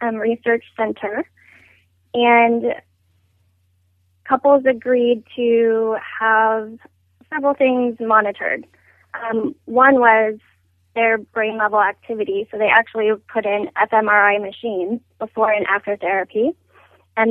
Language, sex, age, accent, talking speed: English, female, 20-39, American, 105 wpm